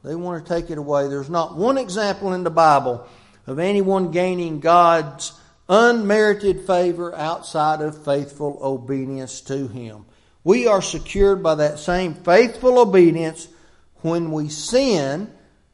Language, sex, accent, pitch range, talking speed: English, male, American, 135-190 Hz, 135 wpm